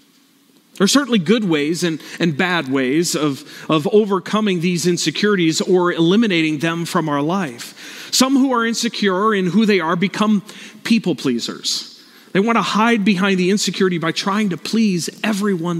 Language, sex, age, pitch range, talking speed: English, male, 40-59, 175-240 Hz, 165 wpm